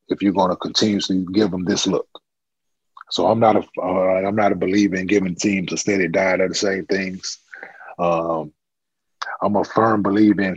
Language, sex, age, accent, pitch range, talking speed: English, male, 30-49, American, 95-115 Hz, 185 wpm